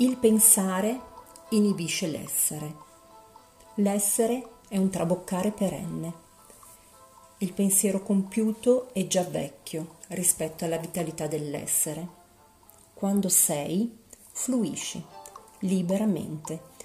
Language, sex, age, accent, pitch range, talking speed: Italian, female, 40-59, native, 160-205 Hz, 80 wpm